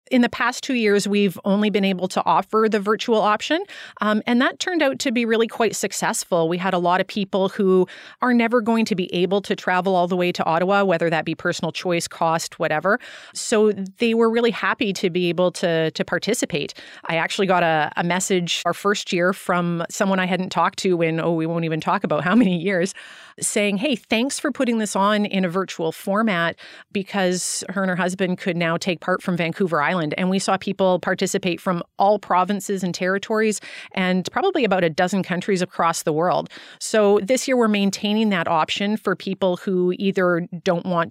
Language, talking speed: English, 205 wpm